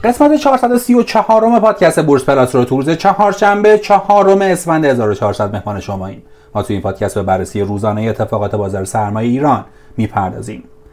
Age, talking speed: 30-49, 160 wpm